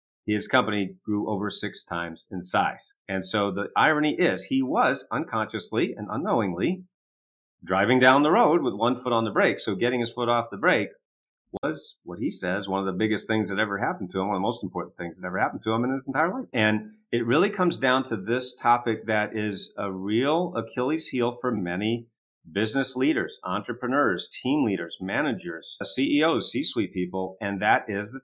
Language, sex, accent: English, male, American